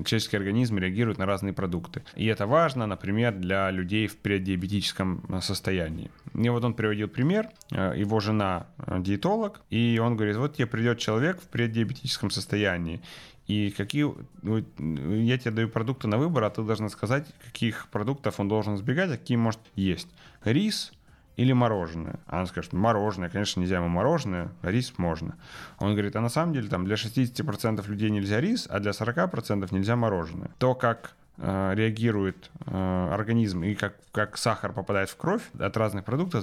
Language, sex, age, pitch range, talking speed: Ukrainian, male, 30-49, 95-120 Hz, 160 wpm